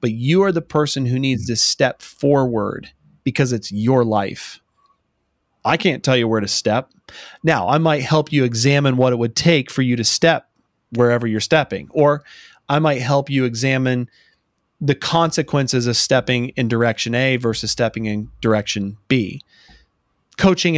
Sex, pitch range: male, 115-145 Hz